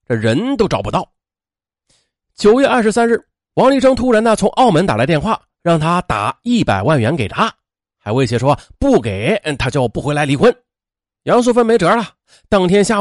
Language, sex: Chinese, male